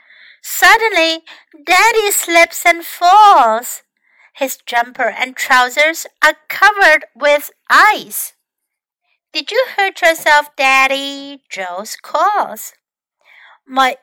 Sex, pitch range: female, 220-330 Hz